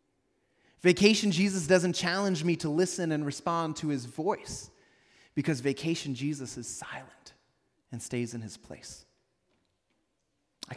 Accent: American